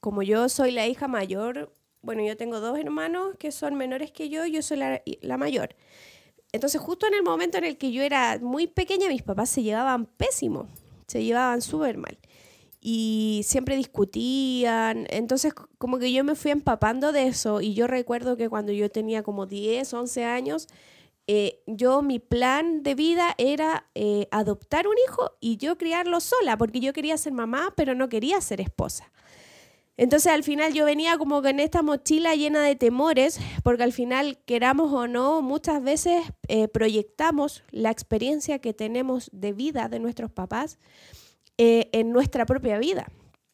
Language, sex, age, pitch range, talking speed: Spanish, female, 20-39, 230-295 Hz, 175 wpm